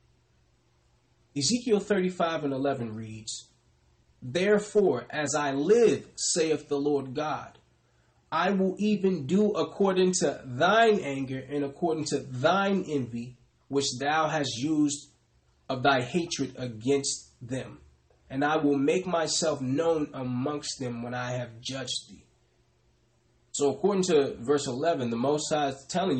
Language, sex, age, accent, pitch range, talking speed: English, male, 30-49, American, 125-155 Hz, 130 wpm